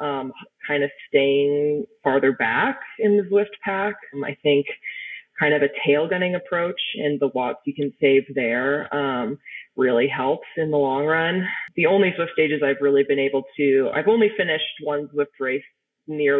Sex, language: female, English